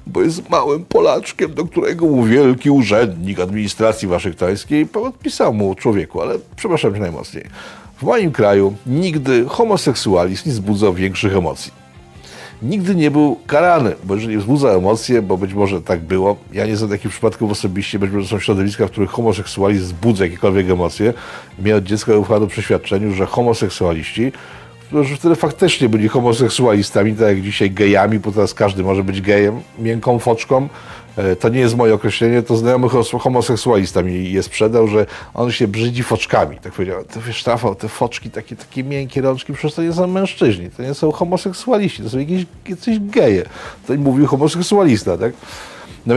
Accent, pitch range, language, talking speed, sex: native, 100-130 Hz, Polish, 170 wpm, male